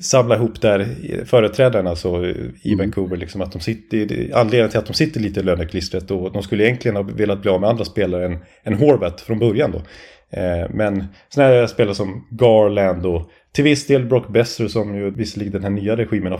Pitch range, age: 105-135 Hz, 30-49